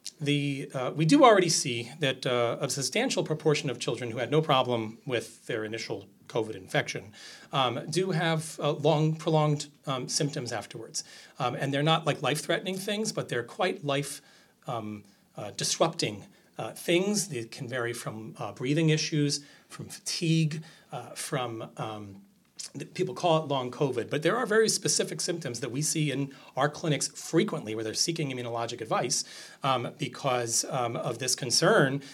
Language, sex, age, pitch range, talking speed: English, male, 40-59, 120-160 Hz, 160 wpm